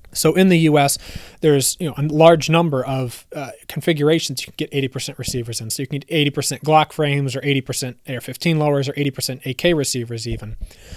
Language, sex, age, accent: English, male, 30-49, American